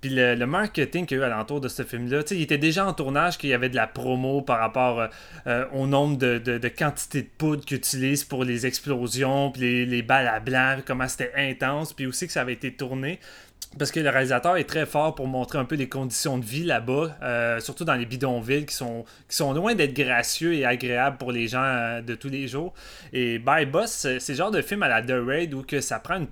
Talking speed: 240 wpm